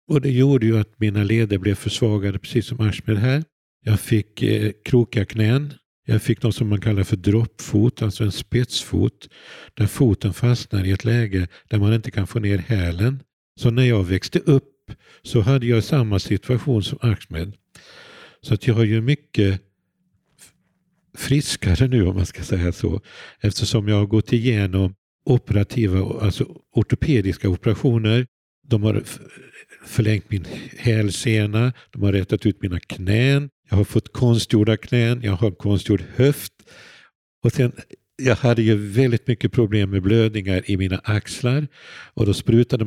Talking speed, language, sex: 160 wpm, English, male